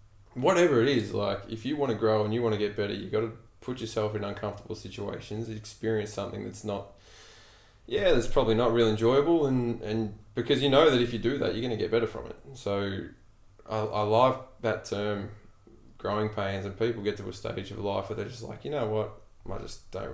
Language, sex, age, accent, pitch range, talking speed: English, male, 20-39, Australian, 100-115 Hz, 225 wpm